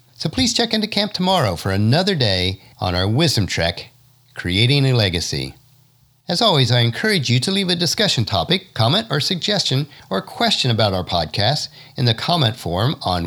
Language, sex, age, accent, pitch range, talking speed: English, male, 50-69, American, 105-165 Hz, 175 wpm